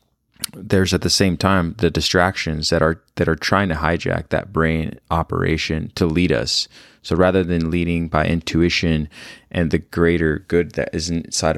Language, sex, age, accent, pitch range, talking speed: English, male, 20-39, American, 80-90 Hz, 170 wpm